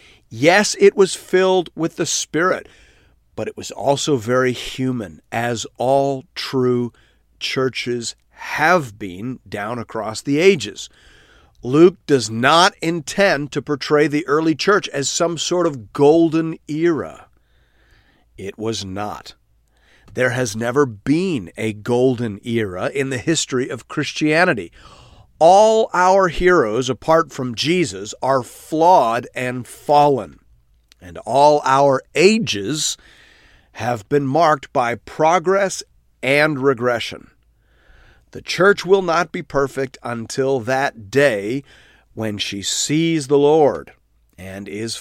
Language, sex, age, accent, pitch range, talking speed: English, male, 50-69, American, 115-160 Hz, 120 wpm